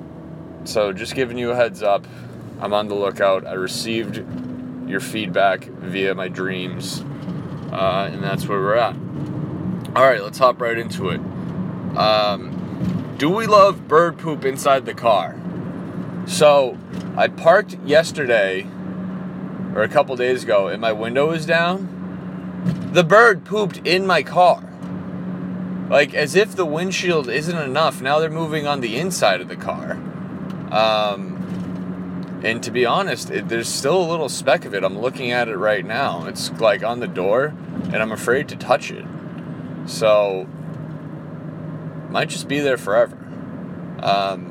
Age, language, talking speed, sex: 20-39, English, 150 wpm, male